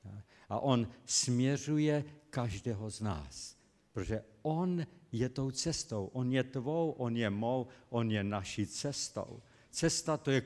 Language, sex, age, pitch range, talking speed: Slovak, male, 50-69, 115-135 Hz, 140 wpm